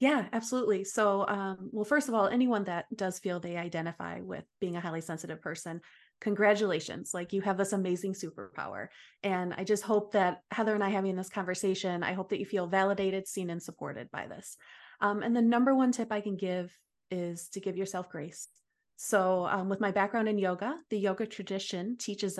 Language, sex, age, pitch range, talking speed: English, female, 30-49, 180-215 Hz, 200 wpm